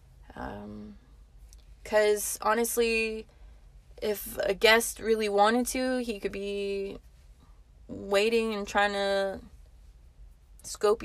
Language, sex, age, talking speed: English, female, 20-39, 90 wpm